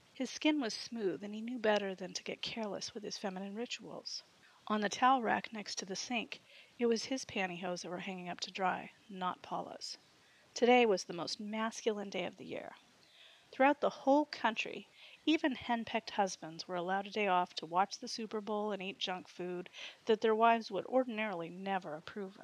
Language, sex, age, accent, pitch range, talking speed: English, female, 30-49, American, 180-230 Hz, 195 wpm